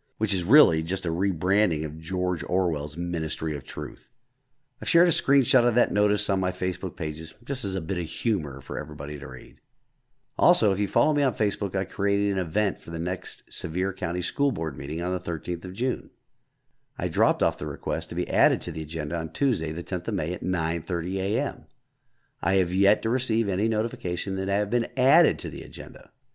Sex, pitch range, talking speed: male, 85-110 Hz, 210 wpm